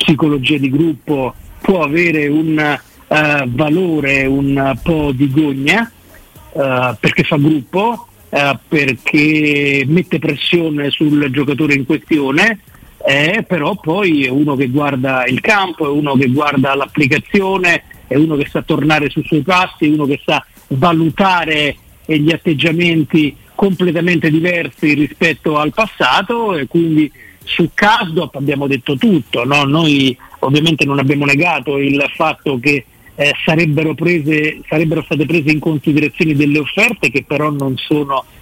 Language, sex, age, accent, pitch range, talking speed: Italian, male, 50-69, native, 140-170 Hz, 135 wpm